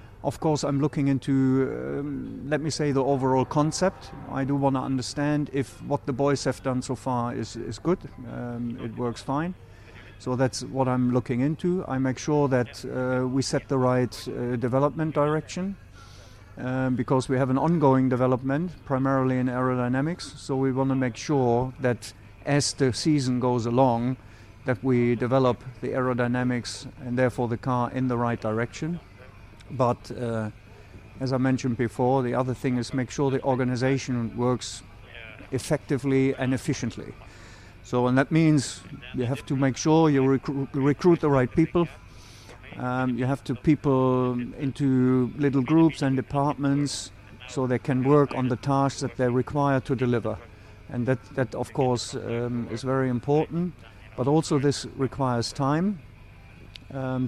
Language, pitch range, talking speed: Swedish, 120-140 Hz, 160 wpm